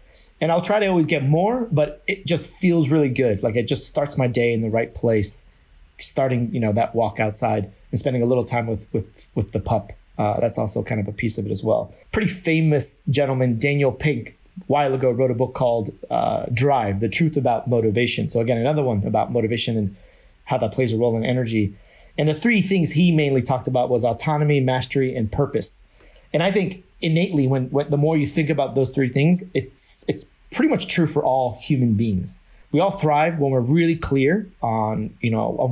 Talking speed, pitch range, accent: 215 wpm, 115-155 Hz, American